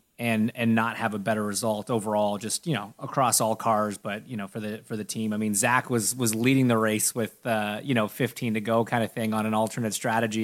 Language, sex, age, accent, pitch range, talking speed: English, male, 30-49, American, 110-135 Hz, 255 wpm